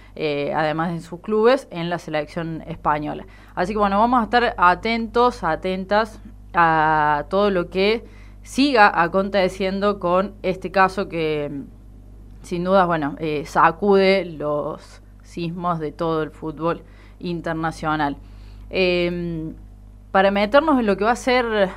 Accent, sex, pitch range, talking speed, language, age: Argentinian, female, 160-205 Hz, 130 wpm, Spanish, 20-39